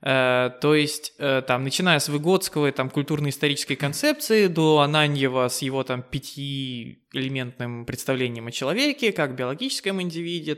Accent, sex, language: native, male, Russian